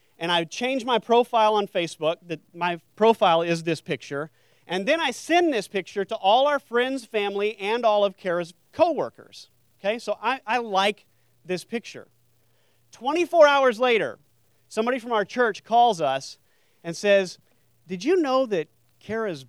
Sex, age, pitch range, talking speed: male, 40-59, 145-205 Hz, 160 wpm